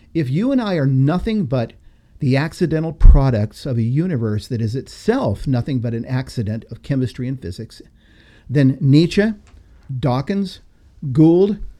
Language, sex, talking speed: English, male, 140 wpm